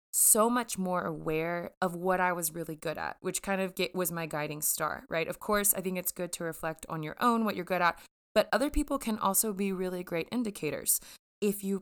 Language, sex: English, female